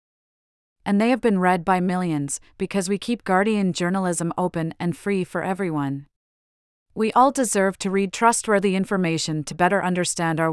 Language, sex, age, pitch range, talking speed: English, female, 40-59, 170-200 Hz, 160 wpm